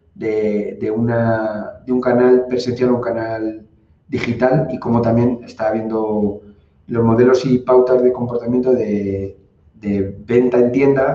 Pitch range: 115-125 Hz